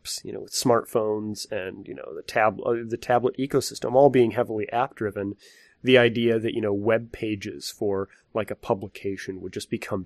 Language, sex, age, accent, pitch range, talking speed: English, male, 30-49, American, 100-125 Hz, 180 wpm